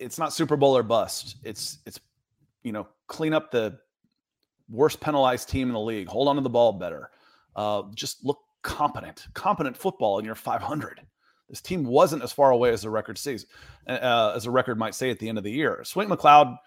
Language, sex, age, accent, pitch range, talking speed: English, male, 30-49, American, 115-145 Hz, 210 wpm